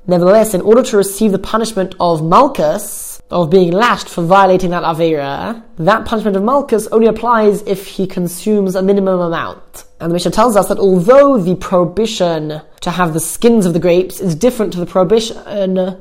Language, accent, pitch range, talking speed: English, British, 180-220 Hz, 185 wpm